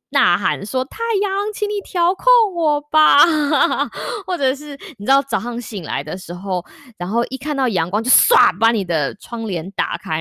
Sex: female